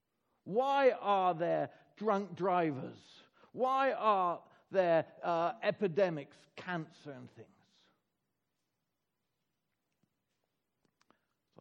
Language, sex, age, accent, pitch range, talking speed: English, male, 60-79, British, 135-175 Hz, 70 wpm